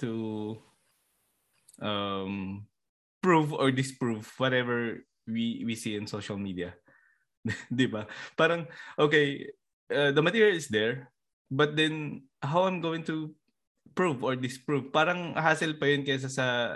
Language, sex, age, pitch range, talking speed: Filipino, male, 20-39, 100-130 Hz, 120 wpm